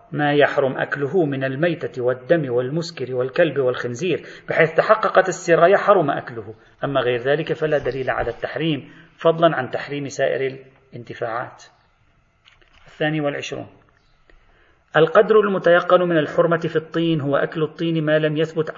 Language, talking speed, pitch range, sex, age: Arabic, 130 wpm, 130-170 Hz, male, 40-59